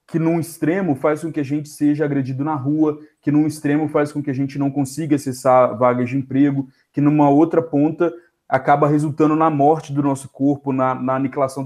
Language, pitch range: Portuguese, 130-155 Hz